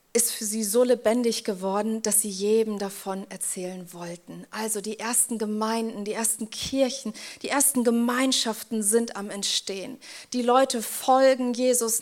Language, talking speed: German, 145 wpm